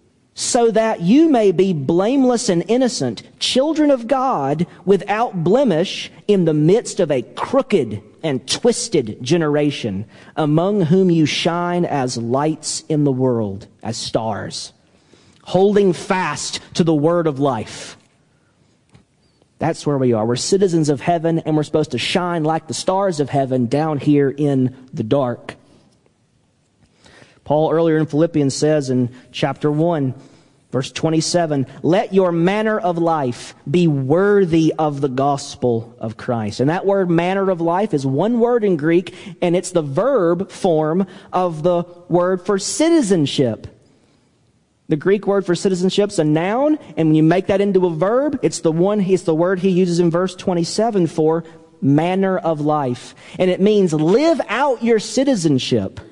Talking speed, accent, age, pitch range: 155 wpm, American, 40-59, 145-195 Hz